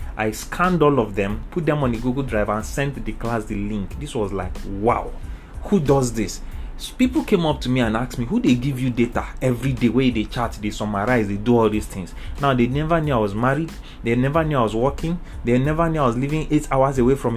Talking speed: 255 wpm